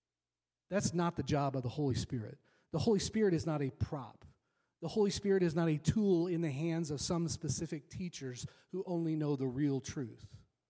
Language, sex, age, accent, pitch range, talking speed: English, male, 40-59, American, 145-190 Hz, 195 wpm